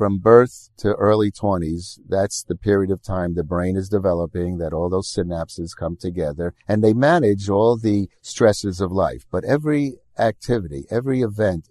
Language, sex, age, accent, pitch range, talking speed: English, male, 50-69, American, 90-110 Hz, 170 wpm